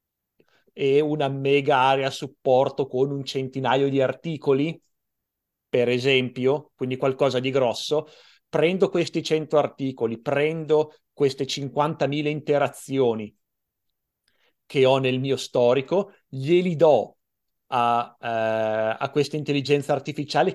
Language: Italian